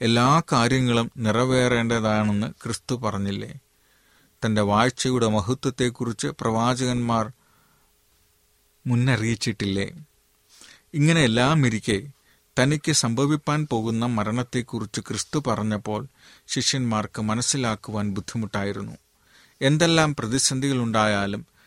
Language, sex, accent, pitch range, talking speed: Malayalam, male, native, 105-135 Hz, 65 wpm